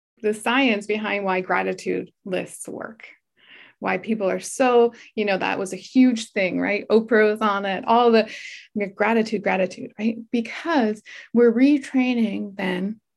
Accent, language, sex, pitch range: American, English, female, 190-235 Hz